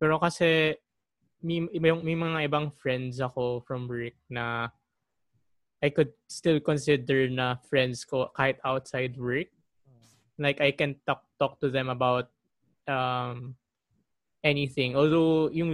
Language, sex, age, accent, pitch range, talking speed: Filipino, male, 20-39, native, 125-150 Hz, 125 wpm